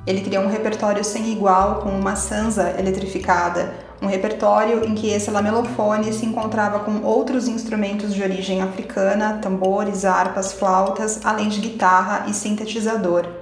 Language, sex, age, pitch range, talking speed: Portuguese, female, 20-39, 190-215 Hz, 145 wpm